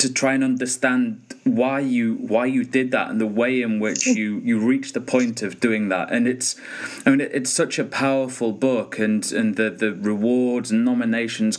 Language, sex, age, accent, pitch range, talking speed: English, male, 30-49, British, 115-175 Hz, 195 wpm